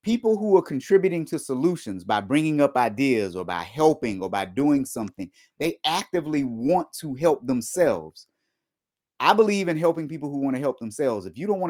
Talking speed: 190 wpm